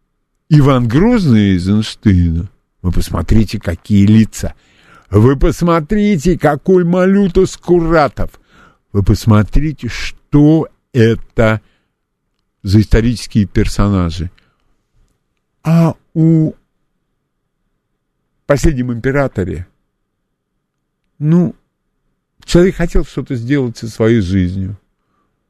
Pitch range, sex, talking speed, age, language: 100-155 Hz, male, 75 wpm, 50-69, Russian